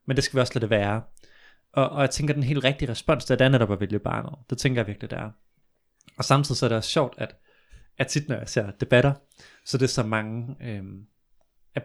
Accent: native